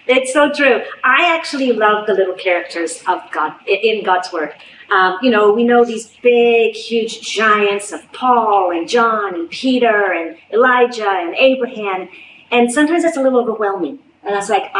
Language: English